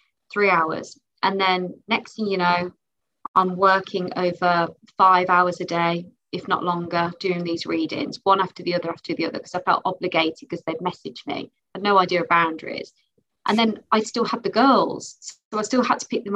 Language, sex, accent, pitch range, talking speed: English, female, British, 180-230 Hz, 205 wpm